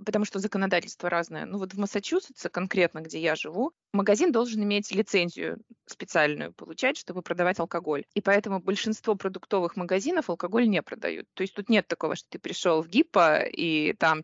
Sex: female